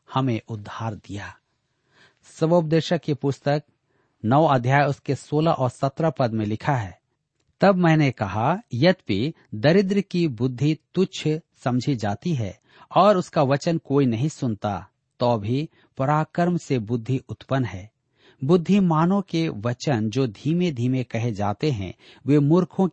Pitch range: 115-160 Hz